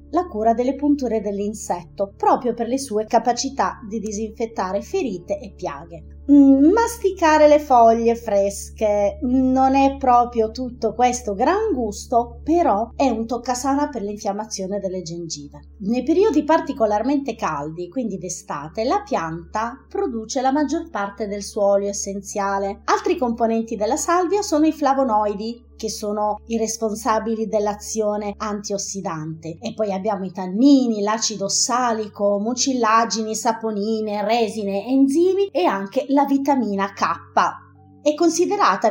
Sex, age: female, 30-49